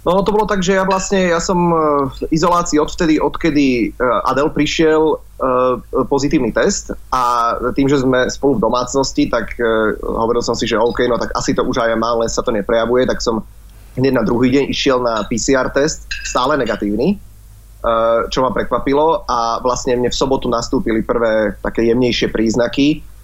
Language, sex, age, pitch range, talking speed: Slovak, male, 30-49, 115-140 Hz, 175 wpm